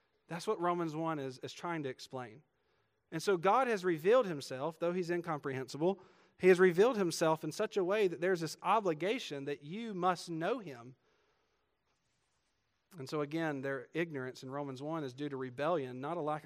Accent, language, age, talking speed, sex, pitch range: American, English, 40-59, 180 wpm, male, 140-180 Hz